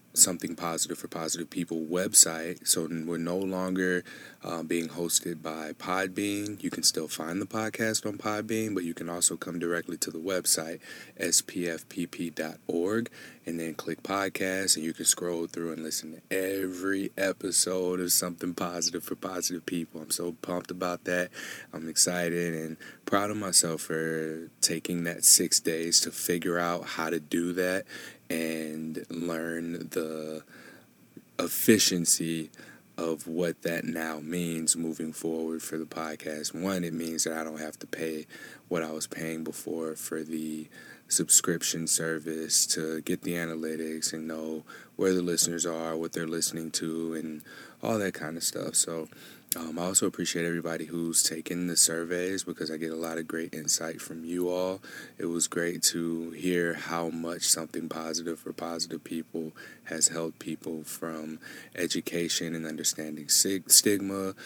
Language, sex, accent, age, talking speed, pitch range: English, male, American, 20-39, 155 wpm, 80-90 Hz